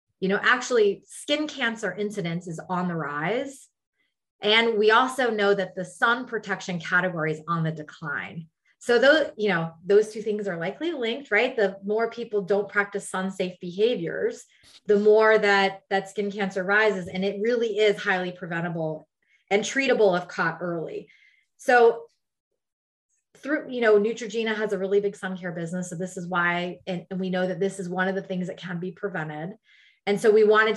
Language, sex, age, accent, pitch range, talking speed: English, female, 30-49, American, 185-215 Hz, 185 wpm